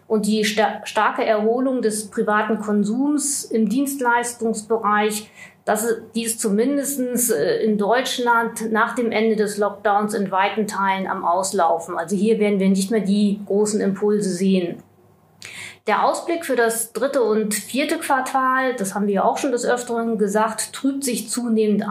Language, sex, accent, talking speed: German, female, German, 145 wpm